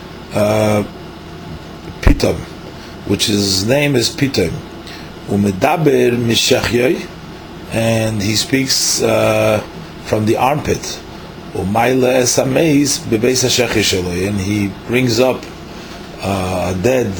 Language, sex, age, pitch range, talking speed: English, male, 40-59, 100-130 Hz, 100 wpm